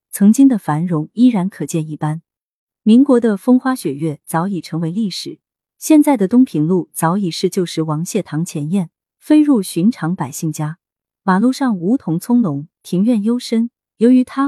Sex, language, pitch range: female, Chinese, 165-240 Hz